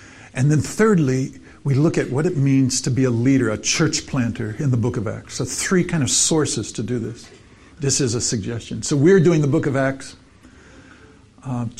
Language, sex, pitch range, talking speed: English, male, 115-160 Hz, 210 wpm